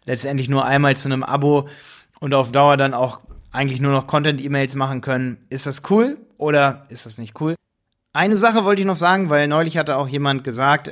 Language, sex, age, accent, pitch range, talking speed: German, male, 30-49, German, 130-155 Hz, 205 wpm